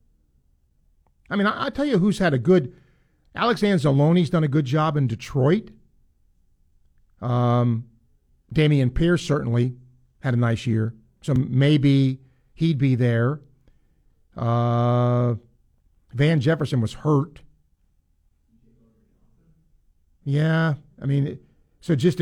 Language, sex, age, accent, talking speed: English, male, 50-69, American, 110 wpm